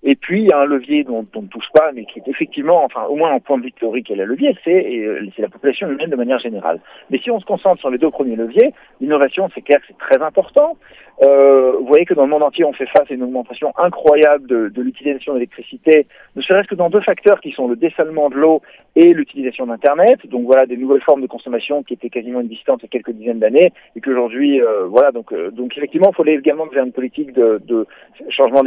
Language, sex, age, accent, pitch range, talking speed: Italian, male, 40-59, French, 130-200 Hz, 255 wpm